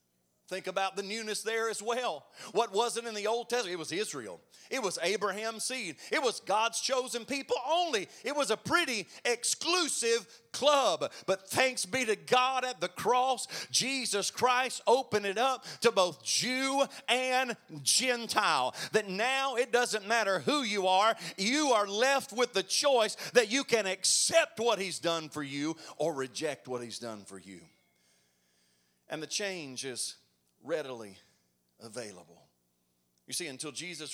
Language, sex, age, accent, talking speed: English, male, 40-59, American, 160 wpm